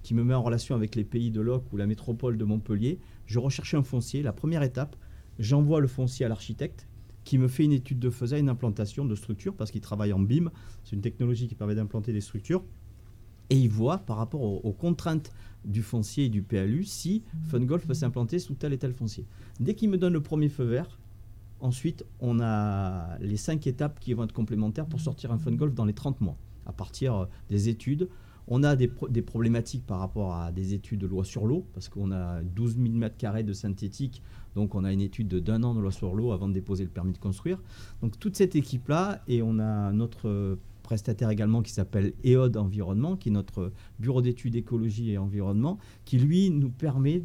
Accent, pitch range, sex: French, 105-135 Hz, male